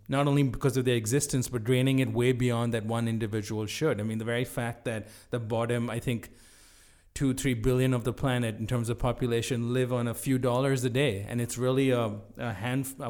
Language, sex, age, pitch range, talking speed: English, male, 30-49, 110-130 Hz, 220 wpm